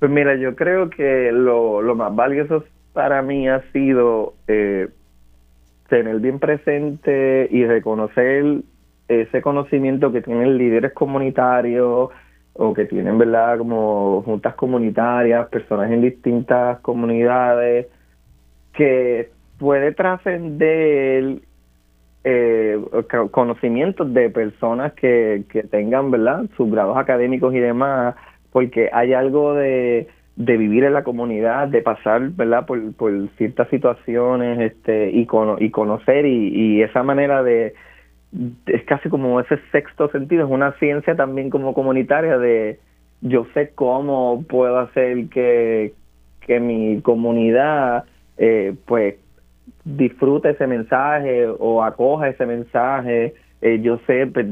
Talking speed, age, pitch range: 125 wpm, 30-49, 115-135 Hz